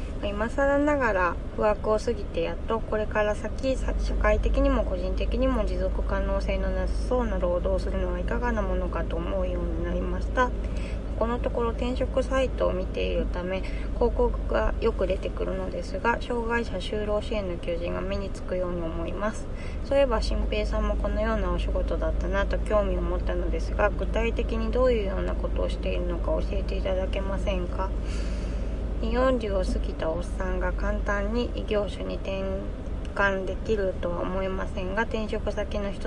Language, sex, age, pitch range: Japanese, female, 20-39, 175-230 Hz